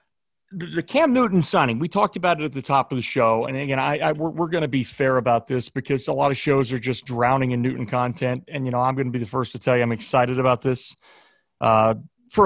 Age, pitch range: 40-59, 125-150 Hz